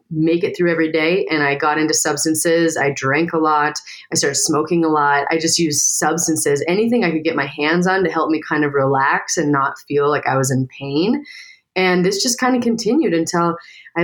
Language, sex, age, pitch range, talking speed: English, female, 30-49, 155-185 Hz, 220 wpm